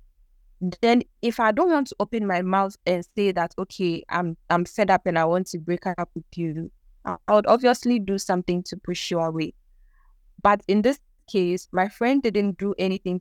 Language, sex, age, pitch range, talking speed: English, female, 20-39, 170-205 Hz, 195 wpm